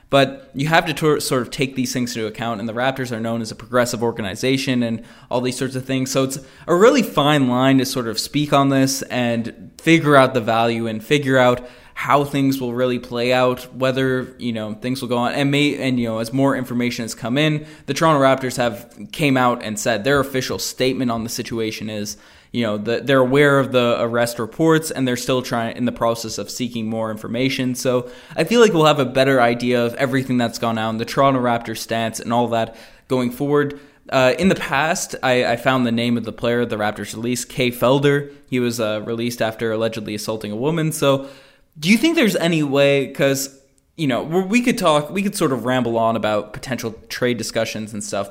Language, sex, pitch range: English, male, 115-140 Hz